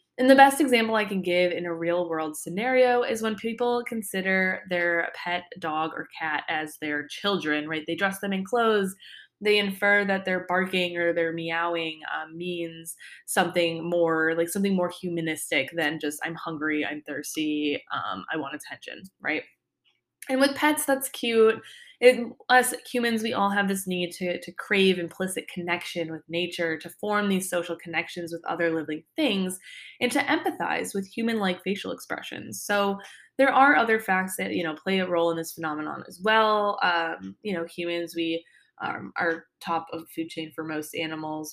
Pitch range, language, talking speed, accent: 165-205 Hz, English, 180 wpm, American